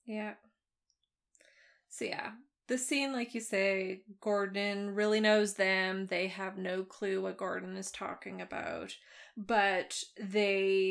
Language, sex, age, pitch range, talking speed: English, female, 20-39, 195-225 Hz, 125 wpm